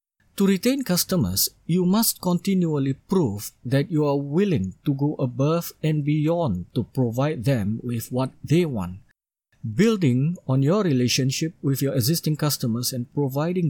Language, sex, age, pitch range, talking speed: English, male, 50-69, 130-165 Hz, 145 wpm